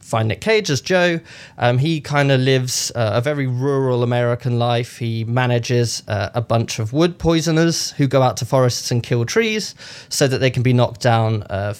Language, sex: English, male